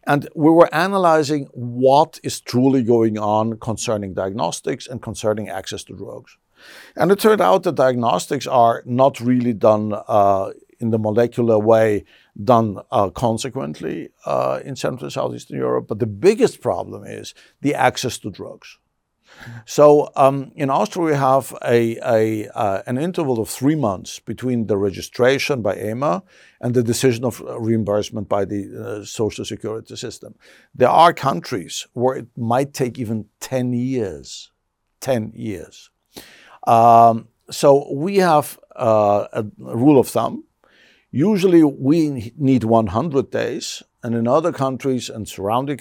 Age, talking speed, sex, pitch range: 60-79, 145 wpm, male, 110-135 Hz